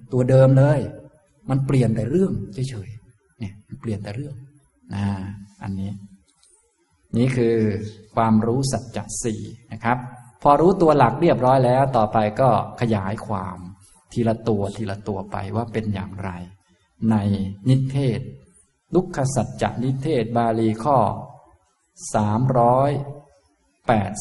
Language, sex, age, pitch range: Thai, male, 20-39, 105-130 Hz